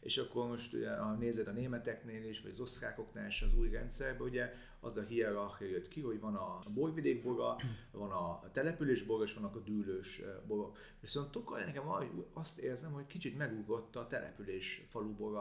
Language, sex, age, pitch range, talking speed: Hungarian, male, 30-49, 110-135 Hz, 185 wpm